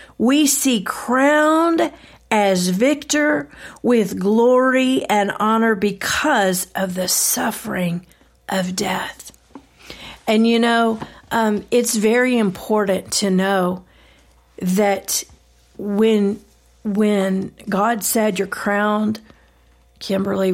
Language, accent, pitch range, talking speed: English, American, 190-220 Hz, 95 wpm